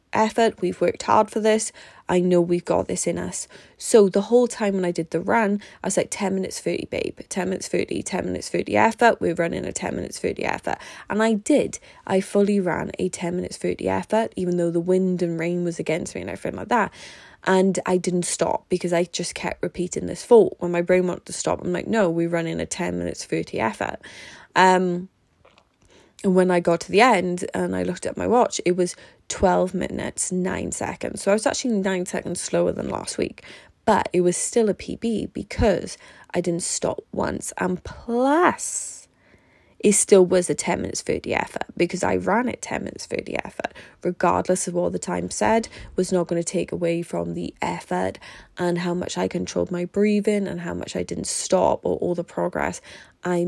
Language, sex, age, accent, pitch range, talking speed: English, female, 20-39, British, 170-200 Hz, 210 wpm